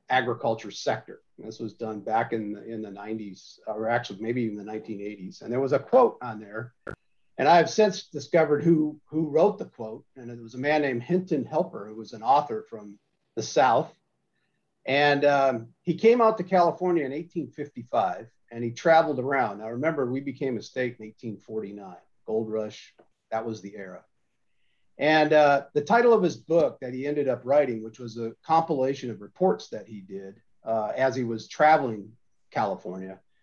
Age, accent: 50-69, American